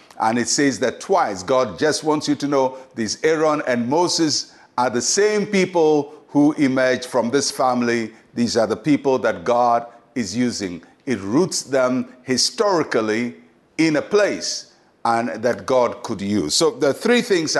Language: English